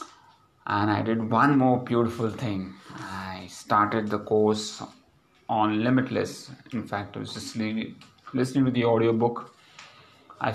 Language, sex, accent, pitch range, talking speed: English, male, Indian, 110-125 Hz, 130 wpm